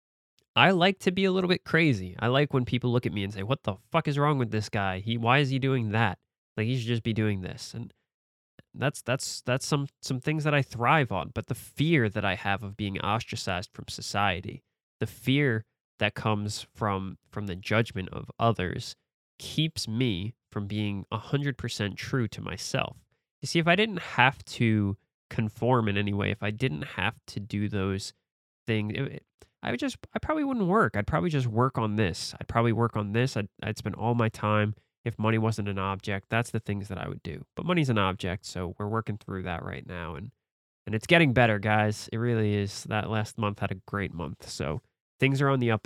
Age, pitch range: 20-39, 105-130 Hz